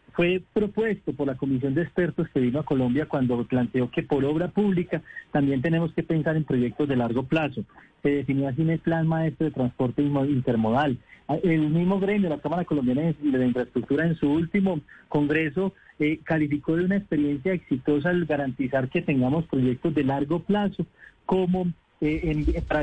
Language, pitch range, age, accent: Spanish, 135-180 Hz, 30-49, Colombian